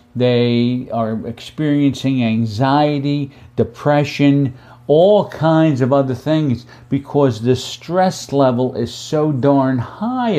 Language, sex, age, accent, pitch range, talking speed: English, male, 50-69, American, 120-135 Hz, 105 wpm